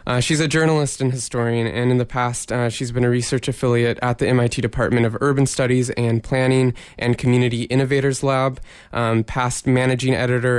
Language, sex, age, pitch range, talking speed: English, male, 20-39, 120-130 Hz, 185 wpm